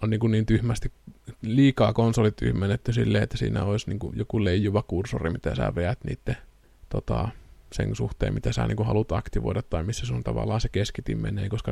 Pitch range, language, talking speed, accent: 100-120 Hz, Finnish, 180 wpm, native